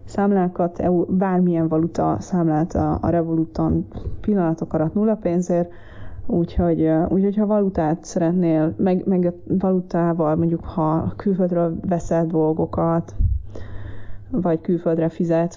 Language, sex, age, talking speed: Hungarian, female, 20-39, 110 wpm